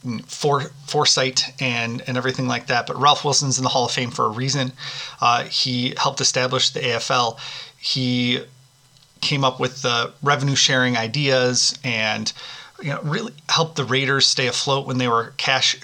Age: 30-49